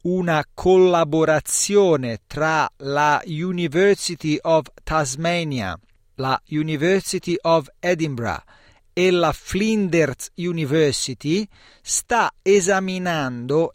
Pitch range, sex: 130-175 Hz, male